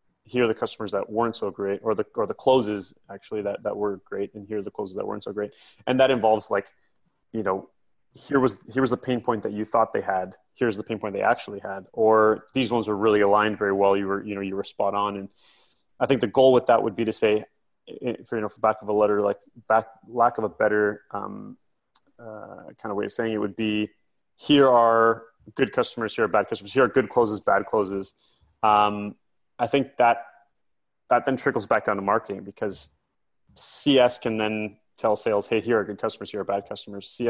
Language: English